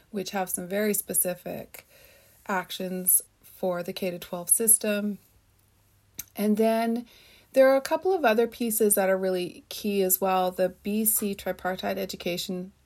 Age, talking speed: 30-49, 135 wpm